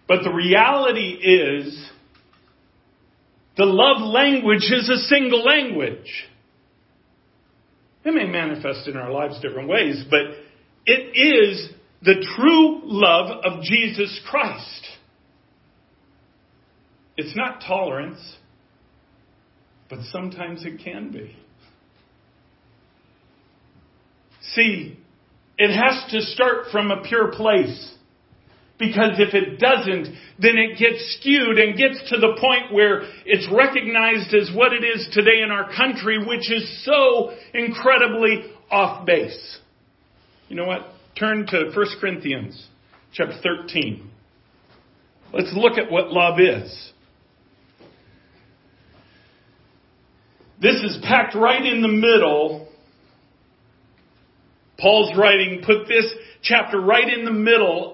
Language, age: English, 50-69